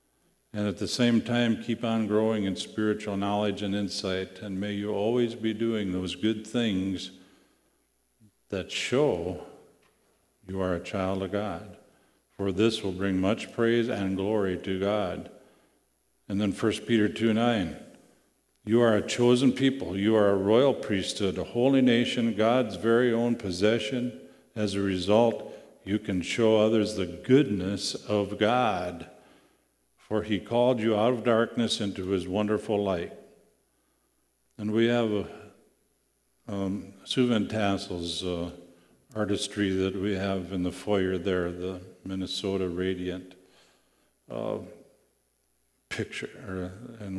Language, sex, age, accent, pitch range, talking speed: English, male, 50-69, American, 95-110 Hz, 135 wpm